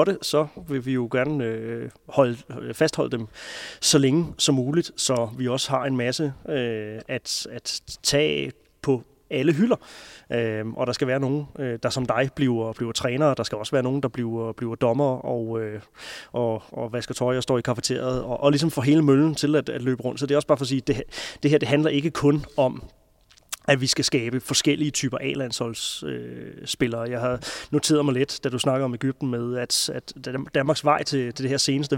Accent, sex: native, male